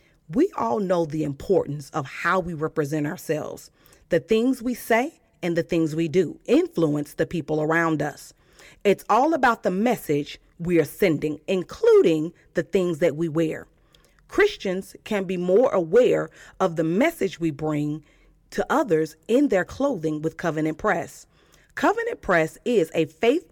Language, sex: English, female